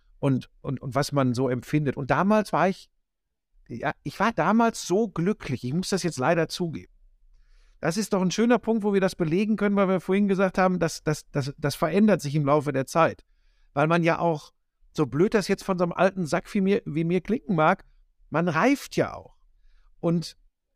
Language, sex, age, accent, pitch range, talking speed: German, male, 50-69, German, 130-195 Hz, 205 wpm